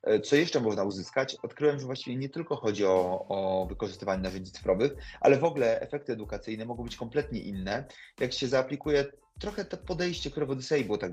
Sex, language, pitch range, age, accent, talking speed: male, Polish, 100-140 Hz, 30-49, native, 190 wpm